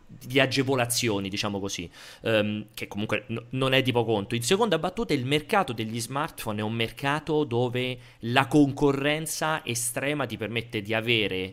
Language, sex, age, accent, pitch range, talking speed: Italian, male, 30-49, native, 105-140 Hz, 155 wpm